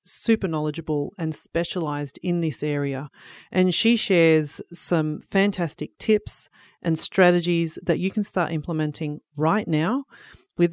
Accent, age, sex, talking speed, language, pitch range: Australian, 40-59, female, 130 wpm, English, 155-185 Hz